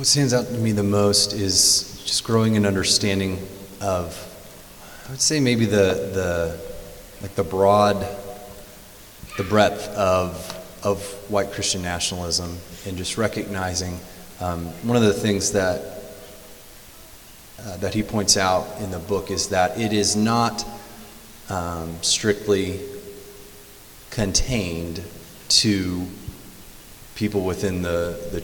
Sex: male